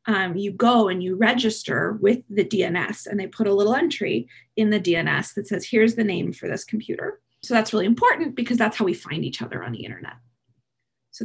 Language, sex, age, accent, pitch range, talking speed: English, female, 20-39, American, 195-240 Hz, 220 wpm